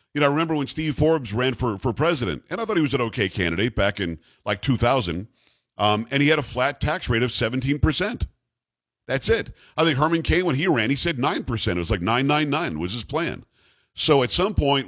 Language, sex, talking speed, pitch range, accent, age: English, male, 225 wpm, 115-150 Hz, American, 50-69